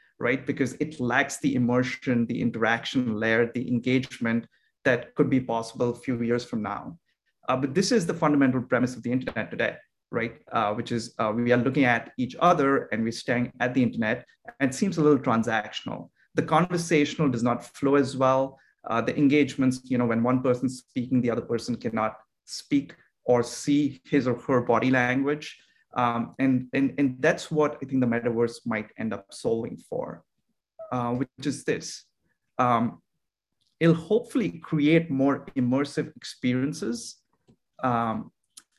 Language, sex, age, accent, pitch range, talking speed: English, male, 30-49, Indian, 120-140 Hz, 170 wpm